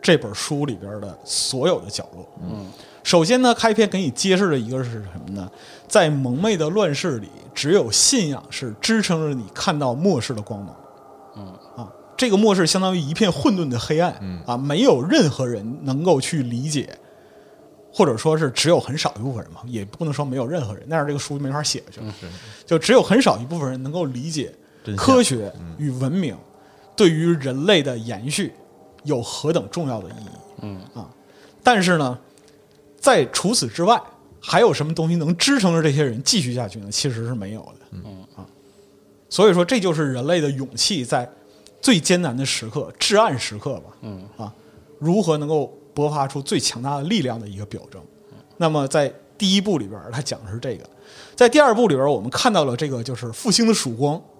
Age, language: 30-49, Chinese